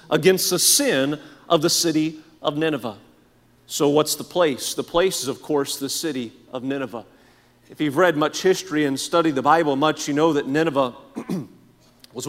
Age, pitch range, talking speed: 40-59, 155-195 Hz, 175 wpm